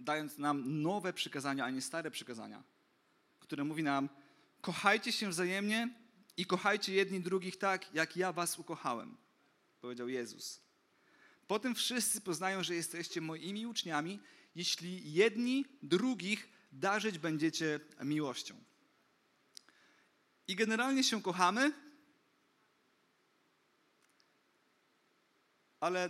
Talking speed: 100 wpm